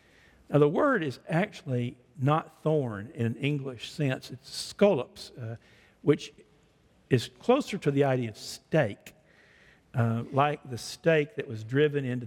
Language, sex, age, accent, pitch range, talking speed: English, male, 50-69, American, 120-150 Hz, 145 wpm